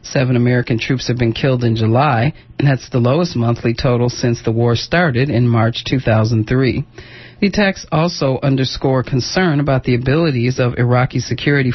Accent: American